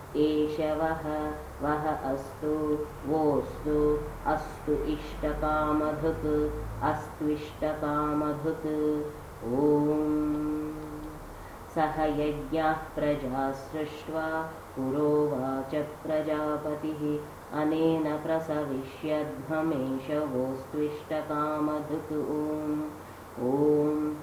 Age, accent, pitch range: 20-39, Indian, 150-155 Hz